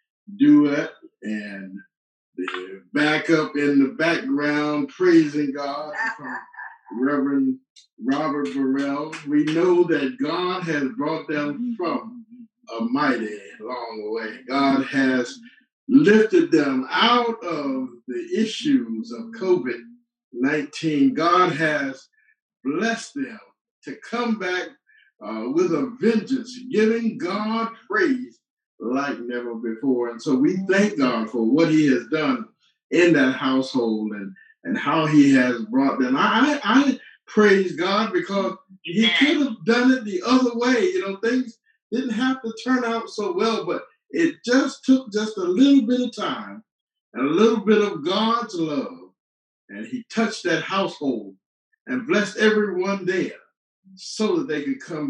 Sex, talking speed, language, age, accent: male, 140 wpm, English, 50-69, American